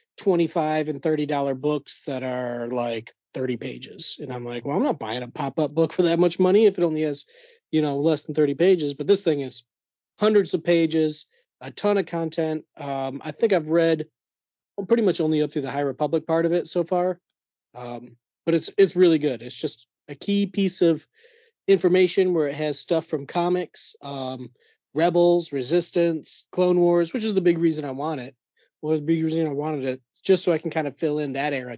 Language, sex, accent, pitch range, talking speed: English, male, American, 145-175 Hz, 210 wpm